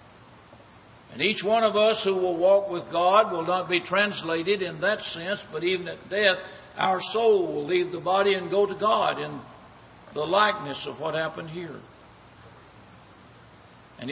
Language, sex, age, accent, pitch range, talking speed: English, male, 60-79, American, 150-195 Hz, 165 wpm